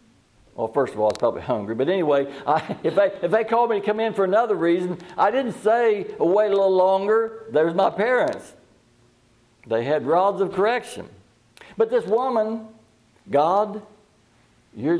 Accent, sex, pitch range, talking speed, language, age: American, male, 115-180 Hz, 165 wpm, English, 60-79